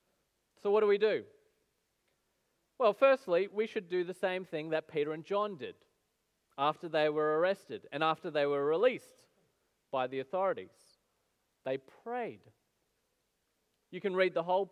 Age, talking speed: 40-59, 150 wpm